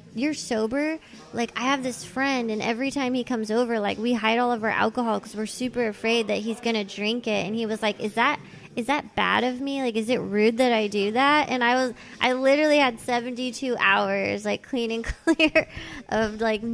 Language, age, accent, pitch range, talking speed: English, 20-39, American, 210-250 Hz, 225 wpm